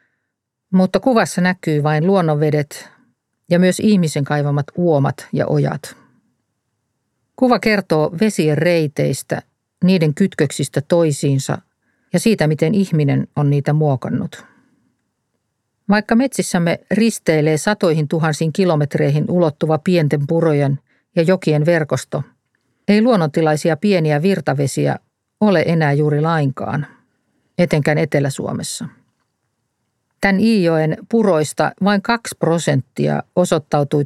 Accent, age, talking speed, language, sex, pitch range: native, 50-69, 95 wpm, Finnish, female, 150-185 Hz